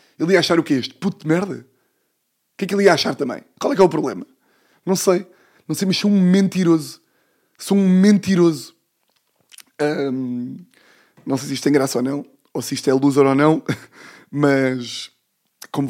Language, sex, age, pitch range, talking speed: Portuguese, male, 20-39, 135-165 Hz, 195 wpm